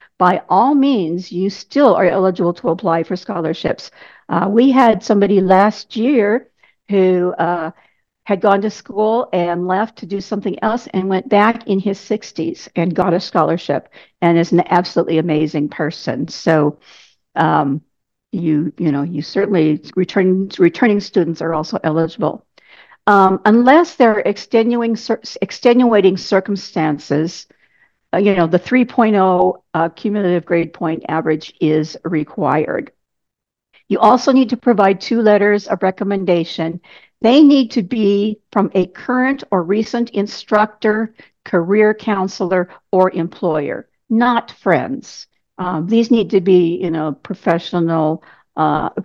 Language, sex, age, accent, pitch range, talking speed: English, female, 60-79, American, 170-215 Hz, 135 wpm